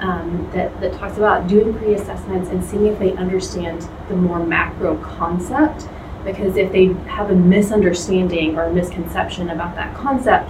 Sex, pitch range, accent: female, 180-205 Hz, American